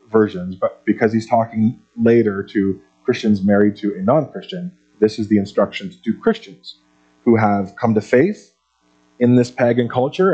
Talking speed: 155 wpm